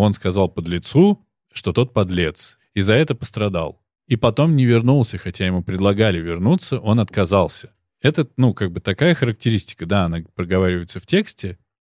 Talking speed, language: 160 wpm, Russian